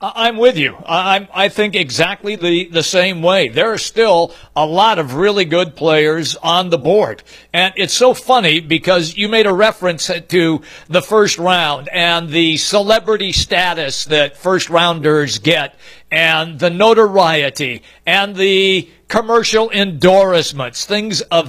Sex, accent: male, American